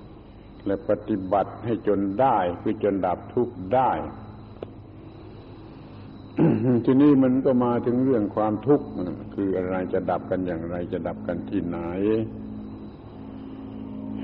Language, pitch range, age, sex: Thai, 100-120 Hz, 70-89, male